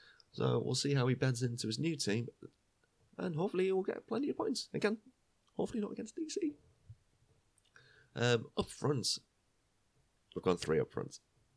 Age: 30-49